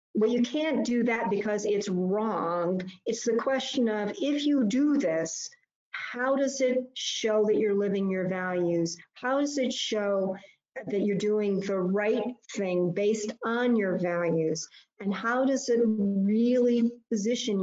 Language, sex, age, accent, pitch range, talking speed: English, female, 50-69, American, 195-245 Hz, 155 wpm